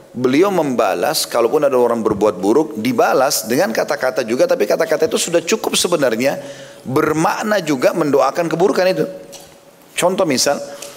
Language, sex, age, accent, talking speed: Indonesian, male, 30-49, native, 130 wpm